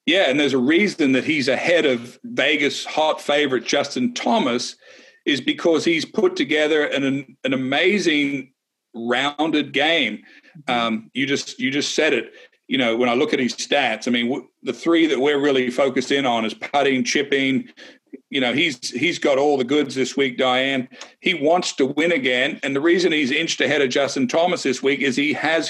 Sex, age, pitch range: male, 40-59, 125-160 Hz